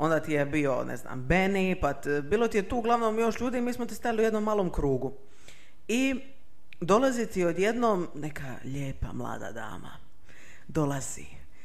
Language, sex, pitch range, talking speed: Croatian, female, 140-190 Hz, 175 wpm